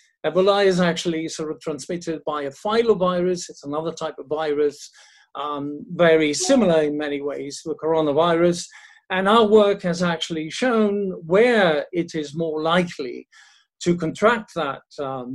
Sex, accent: male, British